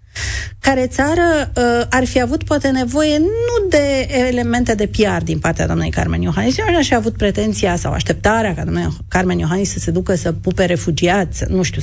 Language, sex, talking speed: Romanian, female, 185 wpm